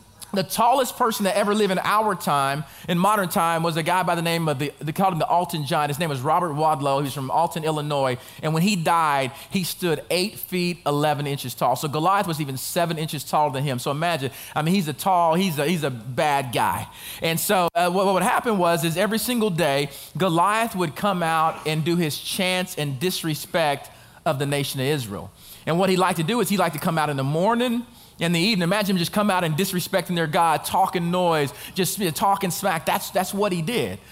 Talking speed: 235 wpm